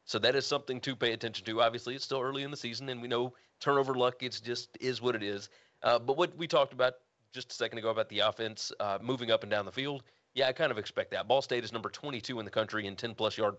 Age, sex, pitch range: 30-49, male, 110-135 Hz